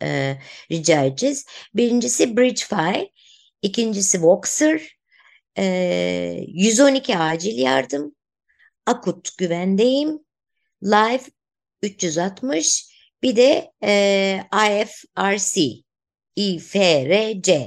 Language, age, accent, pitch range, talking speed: Turkish, 60-79, native, 165-230 Hz, 70 wpm